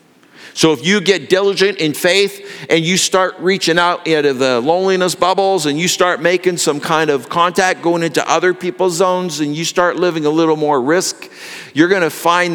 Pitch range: 140-200 Hz